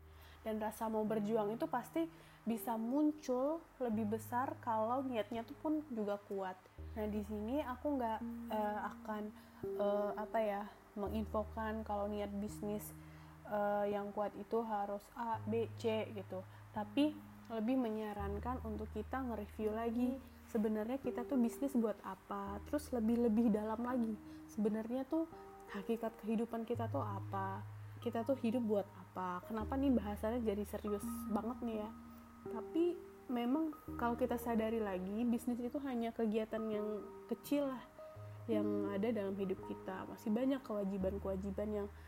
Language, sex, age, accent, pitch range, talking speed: Indonesian, female, 20-39, native, 195-235 Hz, 140 wpm